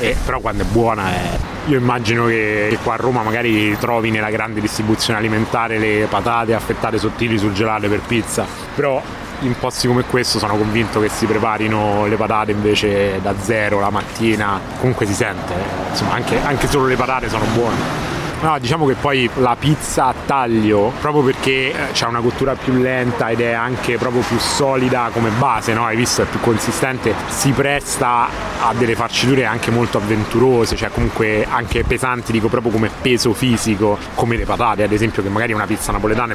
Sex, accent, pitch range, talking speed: male, native, 105-125 Hz, 185 wpm